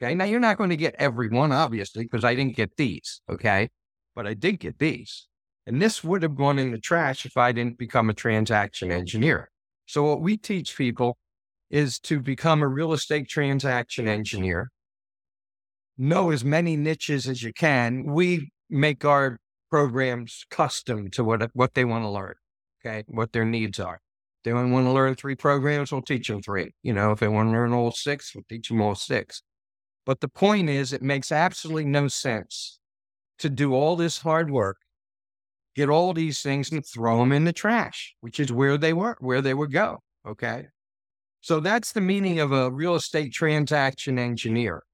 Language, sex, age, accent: English, male, 50-69, American